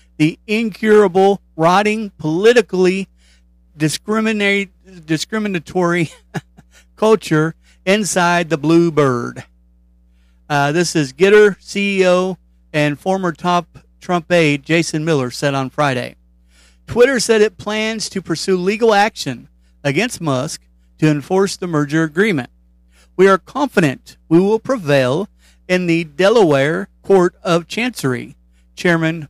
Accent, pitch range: American, 130-185 Hz